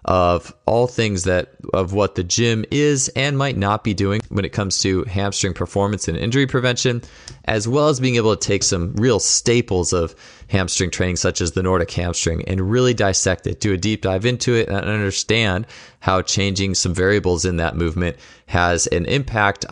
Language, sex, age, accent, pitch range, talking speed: English, male, 20-39, American, 90-110 Hz, 190 wpm